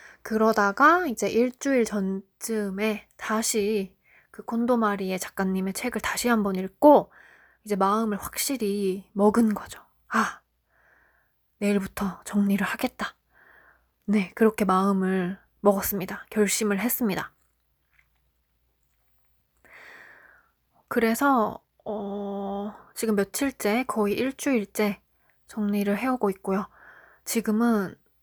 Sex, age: female, 20-39